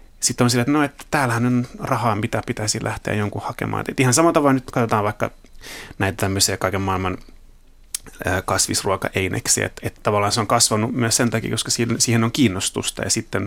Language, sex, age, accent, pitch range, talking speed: Finnish, male, 30-49, native, 100-120 Hz, 185 wpm